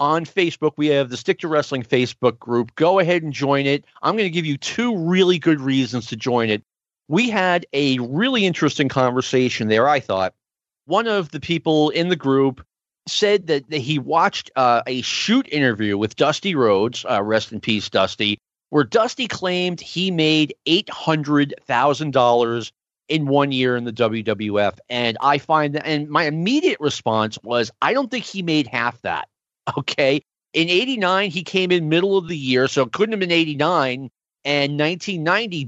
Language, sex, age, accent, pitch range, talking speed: English, male, 40-59, American, 125-185 Hz, 170 wpm